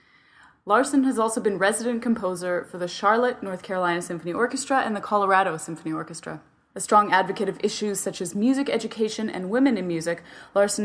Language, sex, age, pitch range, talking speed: English, female, 20-39, 180-220 Hz, 175 wpm